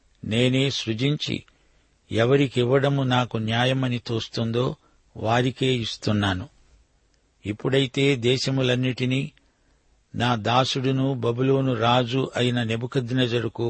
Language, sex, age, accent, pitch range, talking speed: Telugu, male, 60-79, native, 115-130 Hz, 75 wpm